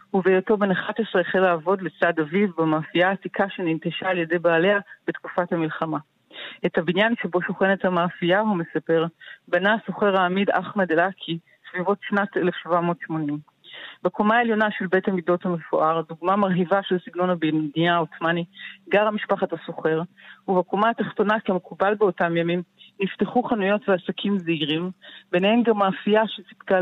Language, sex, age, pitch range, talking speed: Hebrew, female, 40-59, 170-205 Hz, 130 wpm